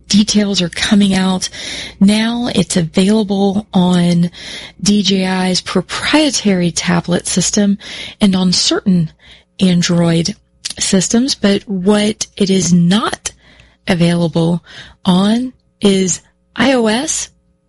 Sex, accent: female, American